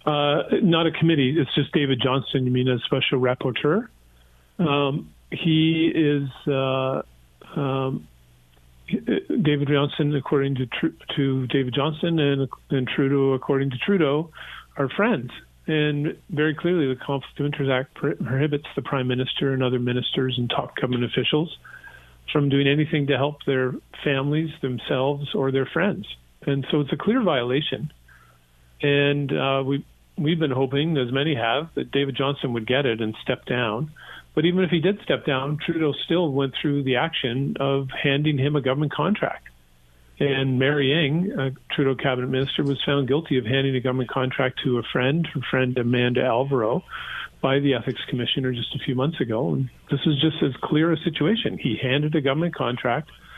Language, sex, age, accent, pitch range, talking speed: English, male, 40-59, American, 130-150 Hz, 170 wpm